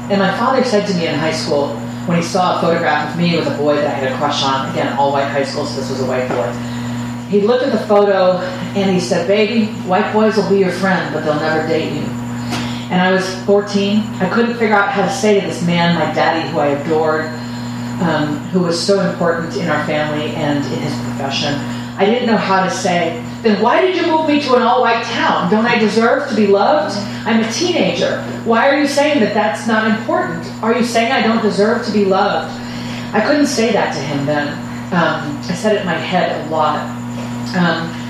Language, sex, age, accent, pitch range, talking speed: English, female, 40-59, American, 135-205 Hz, 230 wpm